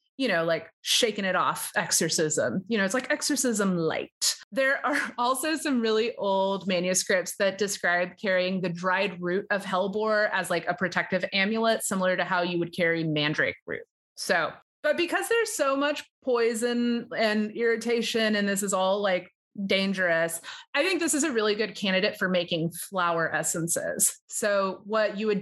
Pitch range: 175-220 Hz